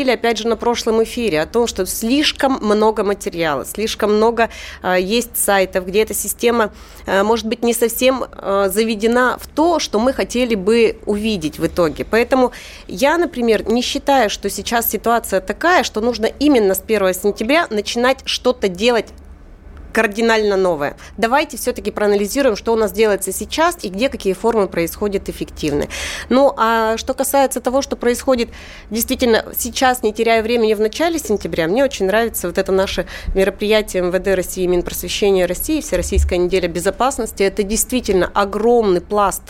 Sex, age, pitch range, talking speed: female, 30-49, 185-240 Hz, 155 wpm